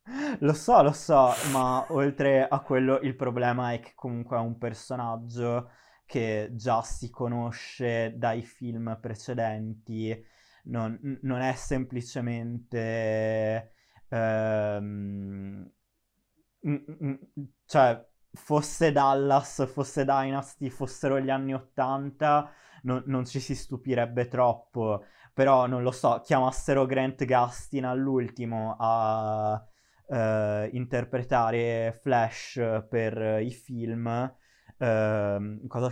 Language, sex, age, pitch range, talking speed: Italian, male, 20-39, 110-130 Hz, 95 wpm